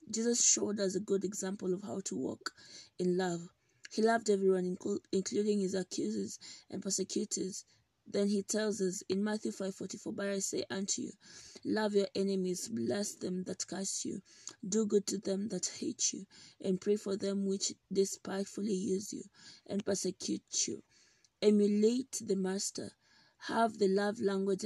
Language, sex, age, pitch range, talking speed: English, female, 20-39, 190-215 Hz, 160 wpm